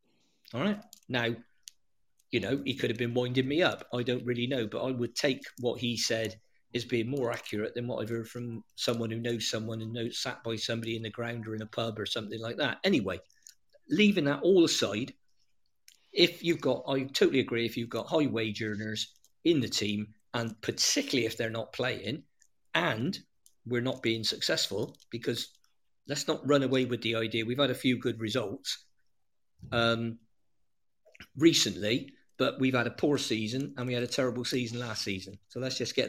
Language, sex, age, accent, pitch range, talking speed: English, male, 50-69, British, 110-130 Hz, 195 wpm